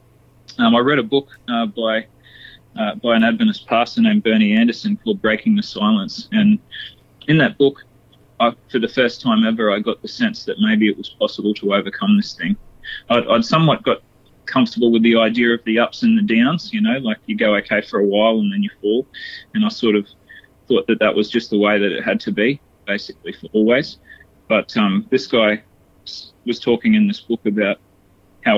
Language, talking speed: English, 210 wpm